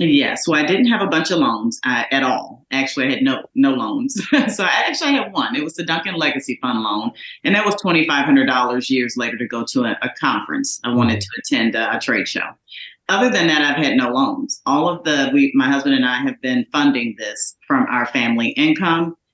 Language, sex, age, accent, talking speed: English, female, 40-59, American, 240 wpm